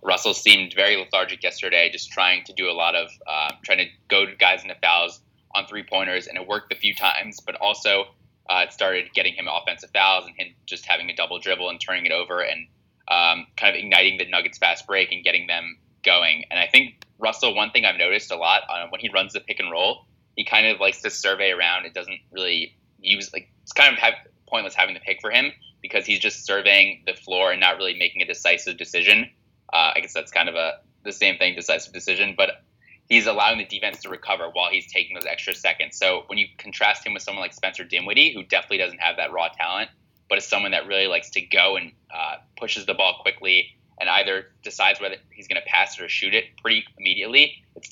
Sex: male